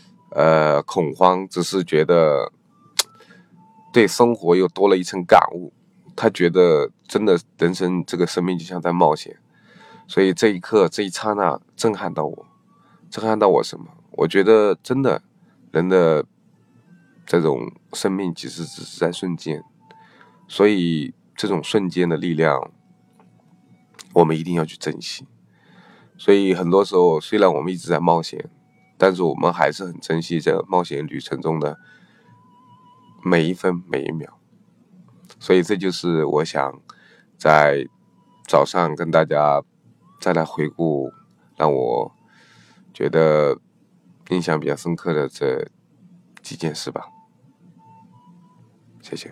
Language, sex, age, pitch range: Chinese, male, 20-39, 80-95 Hz